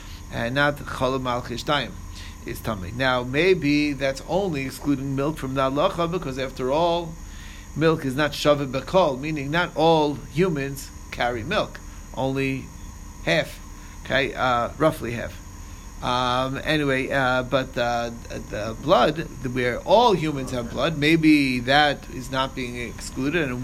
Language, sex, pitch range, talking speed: English, male, 120-160 Hz, 130 wpm